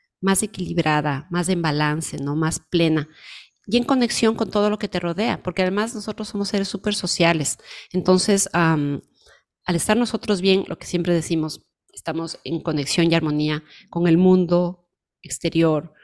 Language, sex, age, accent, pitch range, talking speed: Spanish, female, 30-49, Mexican, 165-190 Hz, 155 wpm